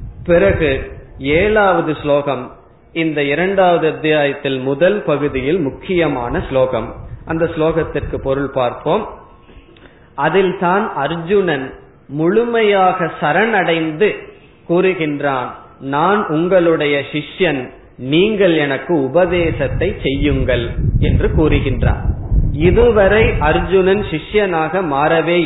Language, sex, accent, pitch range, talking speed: Tamil, male, native, 140-180 Hz, 75 wpm